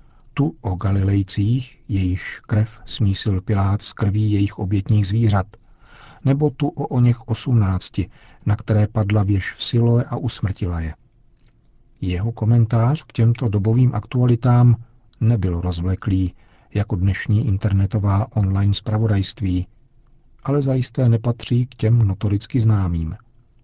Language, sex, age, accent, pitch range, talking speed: Czech, male, 50-69, native, 100-120 Hz, 120 wpm